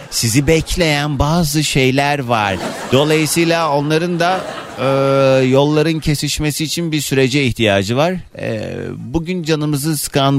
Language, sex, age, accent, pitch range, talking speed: Turkish, male, 30-49, native, 115-150 Hz, 105 wpm